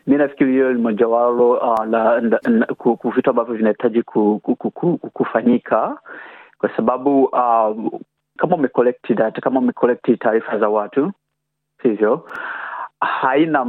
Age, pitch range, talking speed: 30-49, 110-125 Hz, 100 wpm